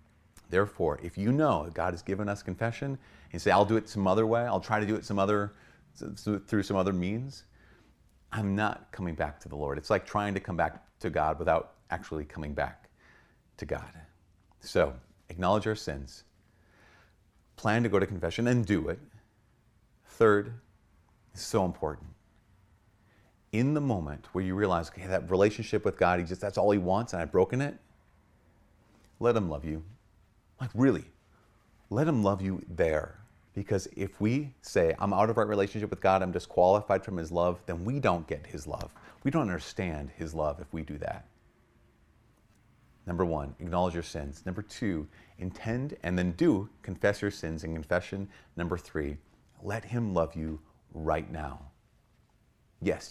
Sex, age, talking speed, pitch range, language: male, 40-59, 175 wpm, 80-105 Hz, English